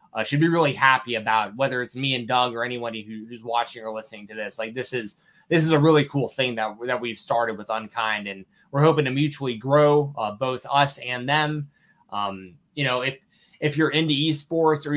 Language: English